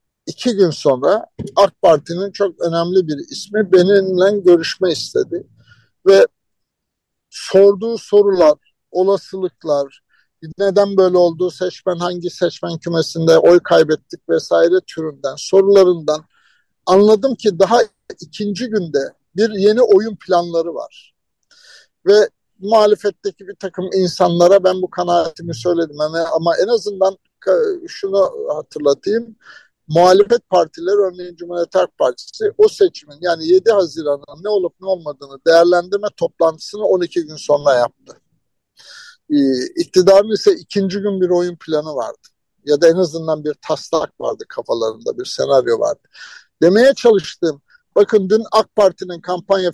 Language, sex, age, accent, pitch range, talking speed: Turkish, male, 60-79, native, 170-210 Hz, 120 wpm